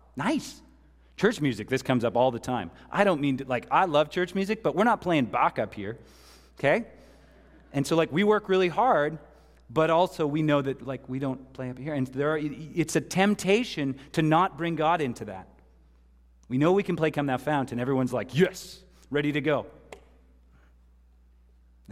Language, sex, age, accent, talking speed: English, male, 30-49, American, 195 wpm